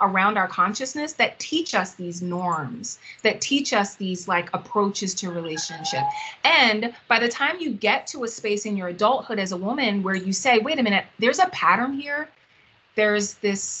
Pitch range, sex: 185-235 Hz, female